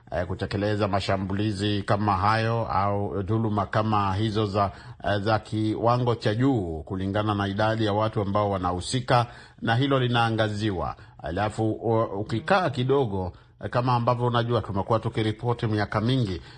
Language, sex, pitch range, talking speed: Swahili, male, 100-120 Hz, 125 wpm